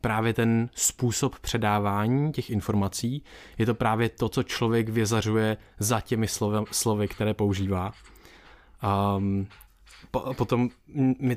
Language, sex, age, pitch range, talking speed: Czech, male, 20-39, 110-125 Hz, 120 wpm